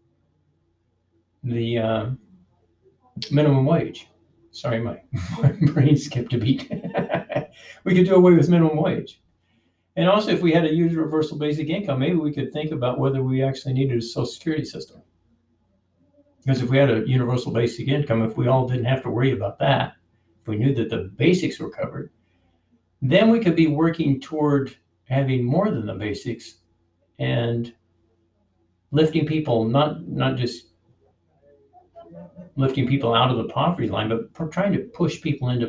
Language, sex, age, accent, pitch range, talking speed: English, male, 60-79, American, 110-150 Hz, 160 wpm